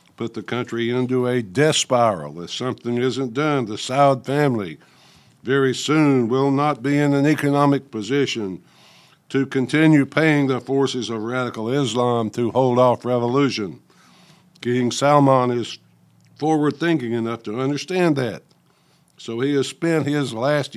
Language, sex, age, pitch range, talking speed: English, male, 60-79, 120-145 Hz, 140 wpm